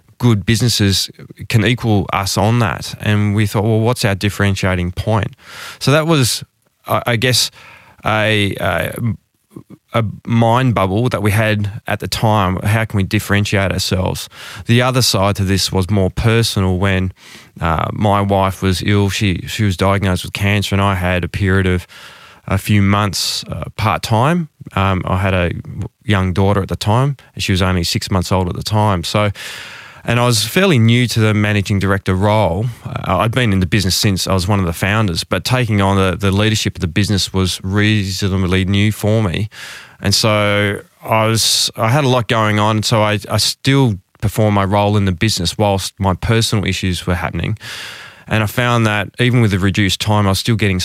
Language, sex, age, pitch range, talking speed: English, male, 20-39, 95-110 Hz, 190 wpm